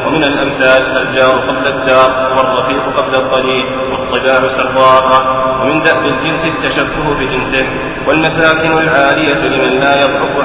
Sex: male